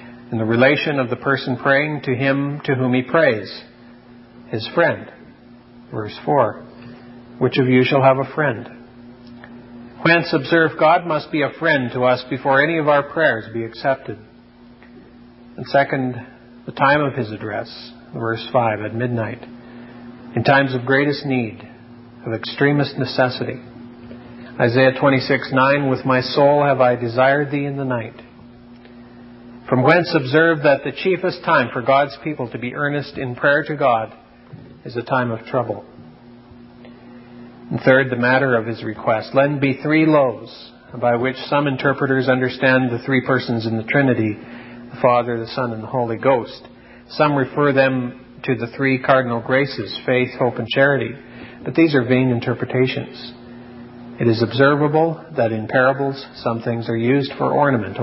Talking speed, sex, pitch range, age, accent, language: 160 wpm, male, 120-135 Hz, 50-69, American, English